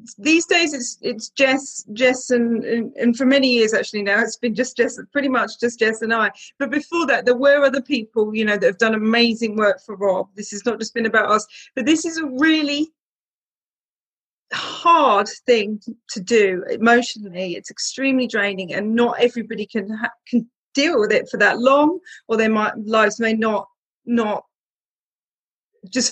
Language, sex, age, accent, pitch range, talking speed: English, female, 30-49, British, 210-255 Hz, 180 wpm